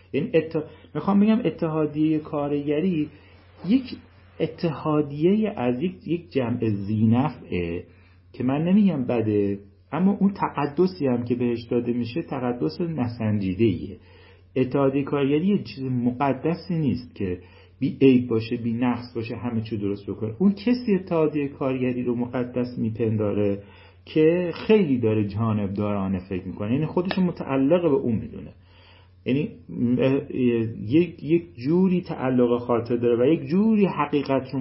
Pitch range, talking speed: 110-150 Hz, 125 wpm